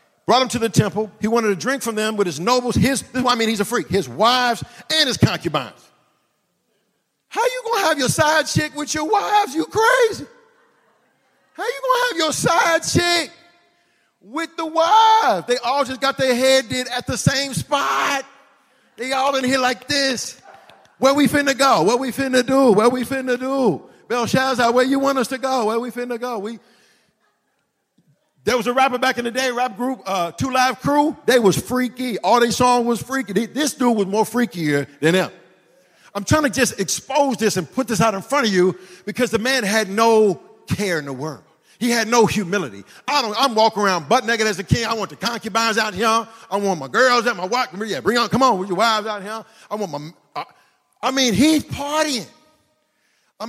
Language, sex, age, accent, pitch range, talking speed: English, male, 50-69, American, 215-270 Hz, 215 wpm